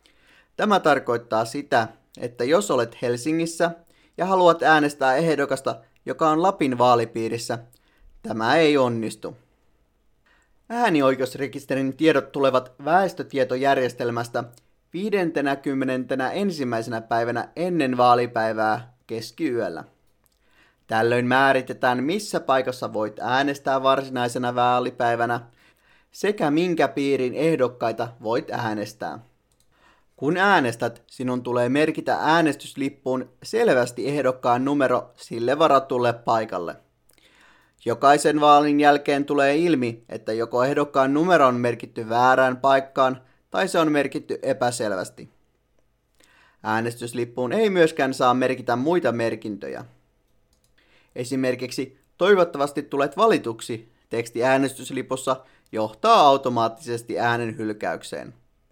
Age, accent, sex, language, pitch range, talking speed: 30-49, native, male, Finnish, 120-145 Hz, 90 wpm